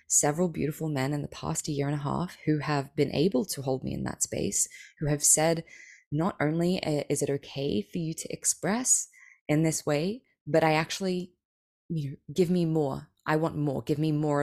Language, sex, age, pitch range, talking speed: English, female, 20-39, 140-165 Hz, 195 wpm